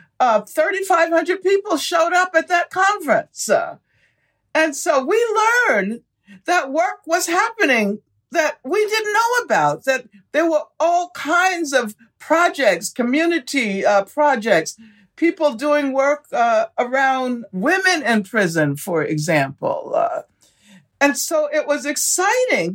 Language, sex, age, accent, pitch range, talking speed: English, female, 60-79, American, 215-325 Hz, 125 wpm